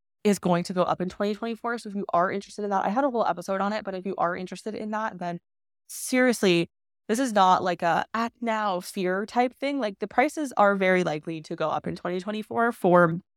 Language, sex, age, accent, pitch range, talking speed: English, female, 20-39, American, 175-215 Hz, 230 wpm